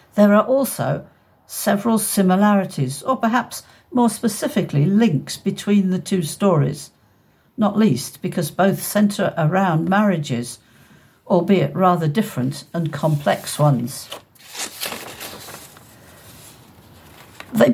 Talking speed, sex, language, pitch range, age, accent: 95 wpm, female, English, 155-200 Hz, 60-79, British